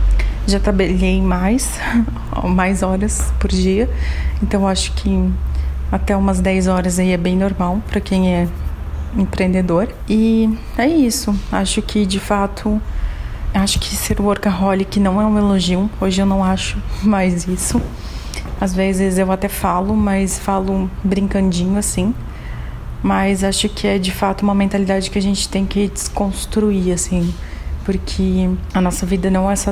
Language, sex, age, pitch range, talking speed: Portuguese, female, 30-49, 185-205 Hz, 150 wpm